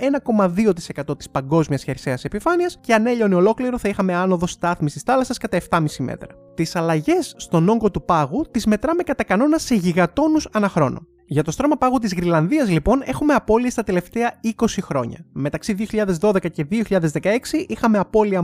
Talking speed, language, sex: 160 wpm, Greek, male